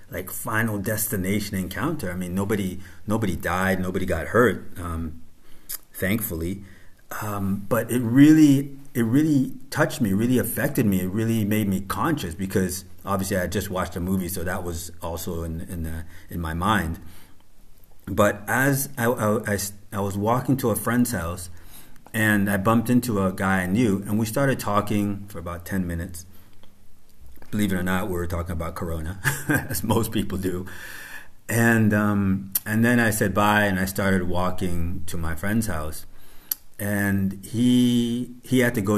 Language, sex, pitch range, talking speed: English, male, 90-110 Hz, 165 wpm